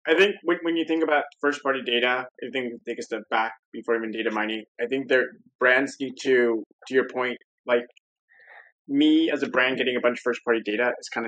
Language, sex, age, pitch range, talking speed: English, male, 20-39, 120-135 Hz, 230 wpm